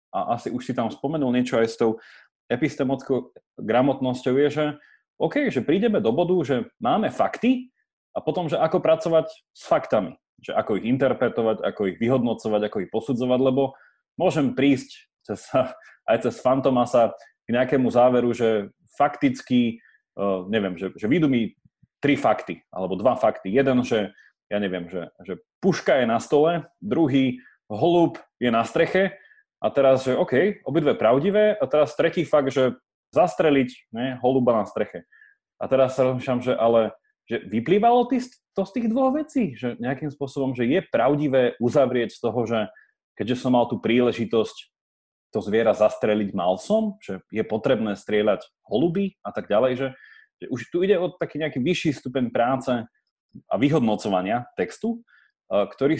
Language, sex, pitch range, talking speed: Slovak, male, 120-170 Hz, 160 wpm